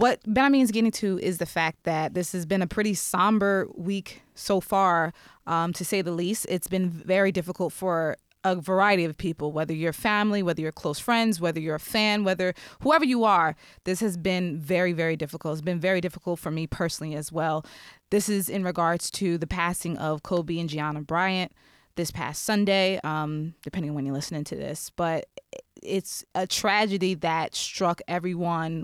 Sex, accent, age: female, American, 20-39